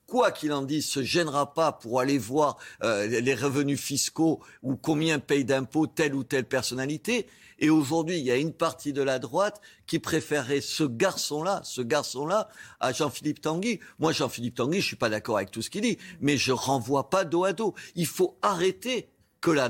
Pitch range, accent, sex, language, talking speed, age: 120-165 Hz, French, male, French, 200 wpm, 50-69